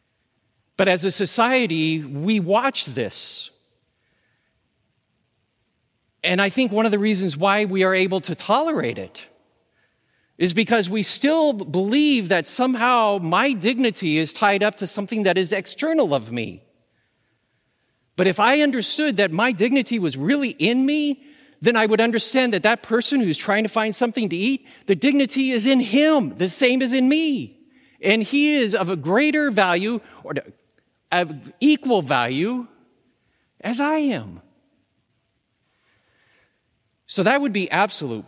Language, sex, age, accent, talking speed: English, male, 40-59, American, 145 wpm